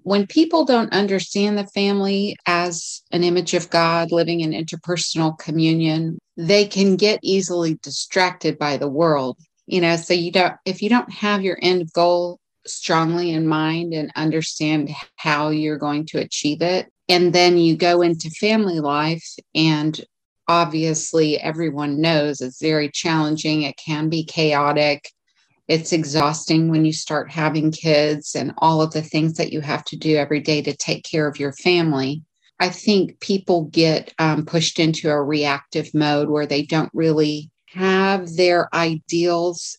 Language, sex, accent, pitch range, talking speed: English, female, American, 150-175 Hz, 160 wpm